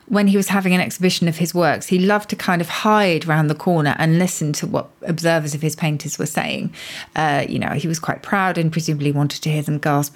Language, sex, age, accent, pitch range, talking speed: English, female, 40-59, British, 155-195 Hz, 250 wpm